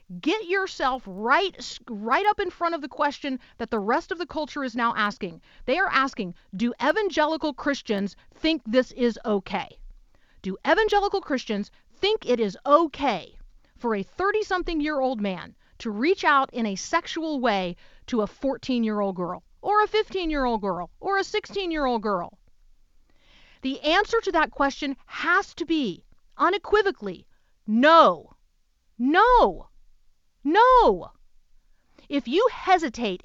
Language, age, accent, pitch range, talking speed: English, 40-59, American, 225-325 Hz, 135 wpm